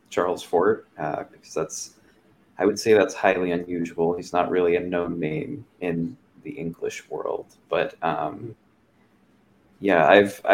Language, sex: English, male